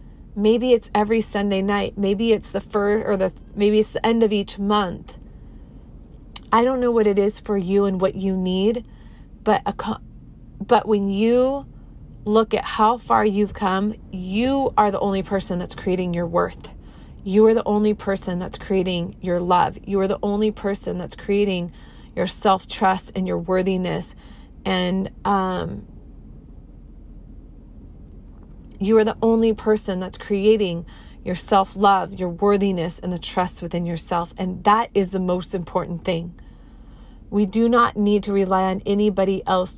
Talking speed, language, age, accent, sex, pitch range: 155 wpm, English, 30-49, American, female, 180-210 Hz